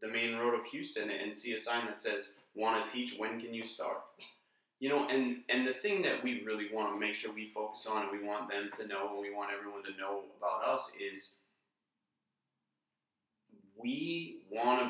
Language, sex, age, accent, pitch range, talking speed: English, male, 30-49, American, 105-125 Hz, 210 wpm